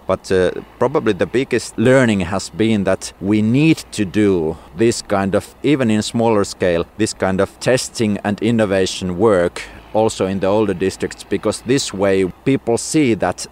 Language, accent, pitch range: English, Finnish, 90-110 Hz